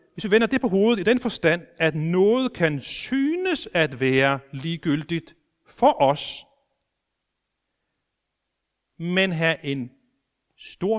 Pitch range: 125-190 Hz